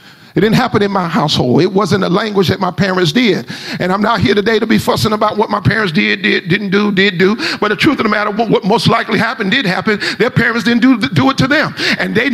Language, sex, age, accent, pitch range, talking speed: English, male, 40-59, American, 185-245 Hz, 265 wpm